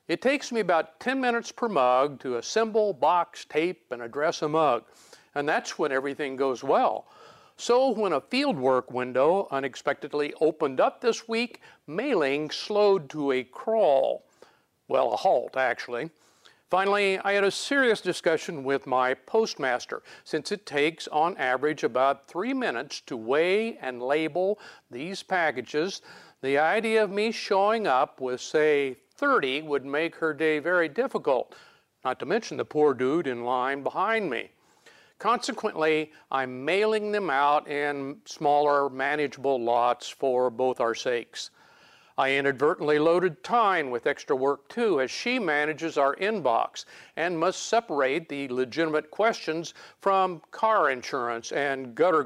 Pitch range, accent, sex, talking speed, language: 135-210 Hz, American, male, 145 wpm, English